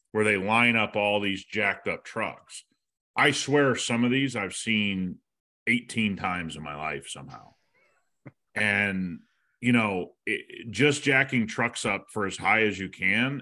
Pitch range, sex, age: 95-125 Hz, male, 30-49